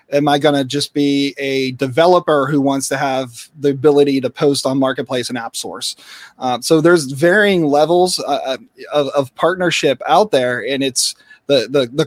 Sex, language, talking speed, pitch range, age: male, English, 185 wpm, 135-160 Hz, 30-49